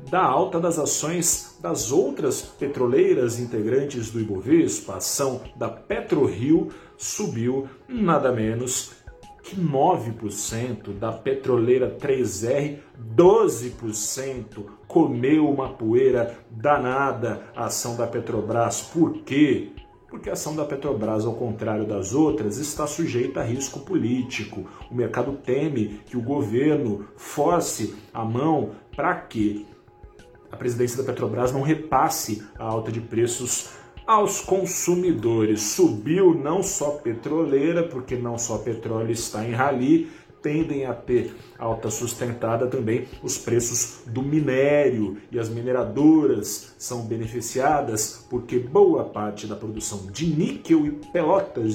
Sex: male